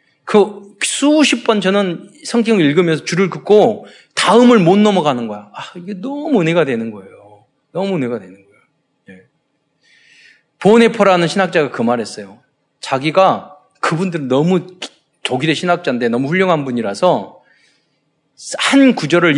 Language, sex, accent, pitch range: Korean, male, native, 135-215 Hz